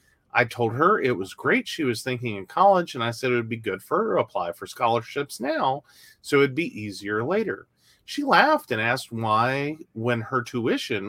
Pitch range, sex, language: 115-155 Hz, male, English